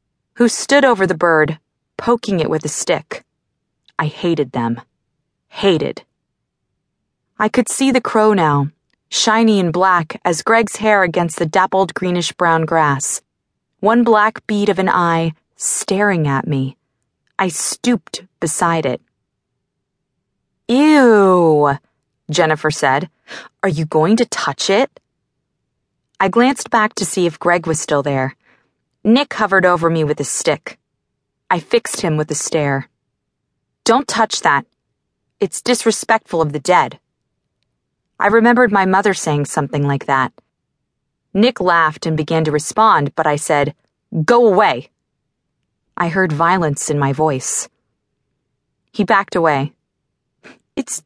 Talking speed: 135 wpm